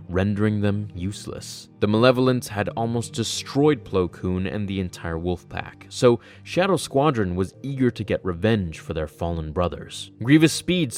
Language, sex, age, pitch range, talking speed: English, male, 20-39, 95-120 Hz, 160 wpm